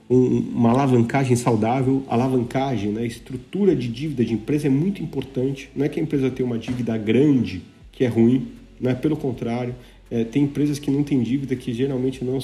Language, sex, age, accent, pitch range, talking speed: Portuguese, male, 40-59, Brazilian, 115-140 Hz, 180 wpm